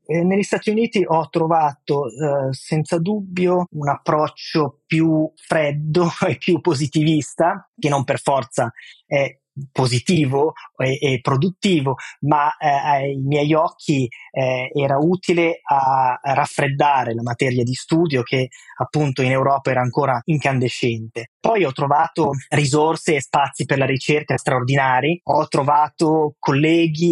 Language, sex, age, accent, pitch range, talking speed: Italian, male, 20-39, native, 135-170 Hz, 125 wpm